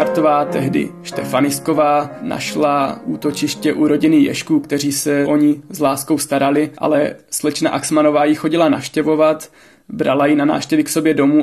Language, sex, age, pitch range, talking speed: Czech, male, 20-39, 145-160 Hz, 145 wpm